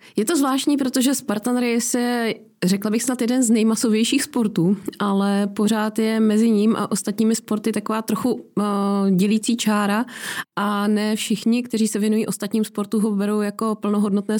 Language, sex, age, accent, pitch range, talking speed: Czech, female, 20-39, native, 200-220 Hz, 155 wpm